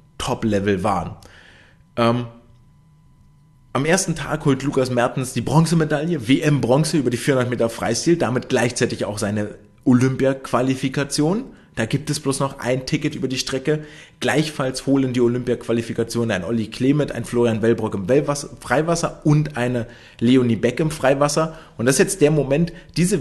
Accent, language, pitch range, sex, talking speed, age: German, German, 120-150 Hz, male, 145 wpm, 30-49